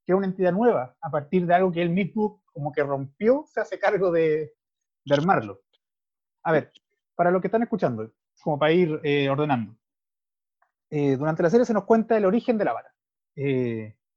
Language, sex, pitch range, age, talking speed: Spanish, male, 155-195 Hz, 30-49, 200 wpm